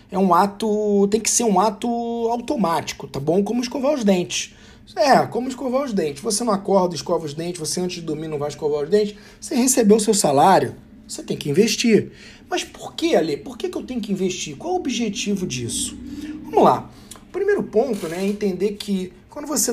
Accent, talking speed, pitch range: Brazilian, 215 wpm, 165-225 Hz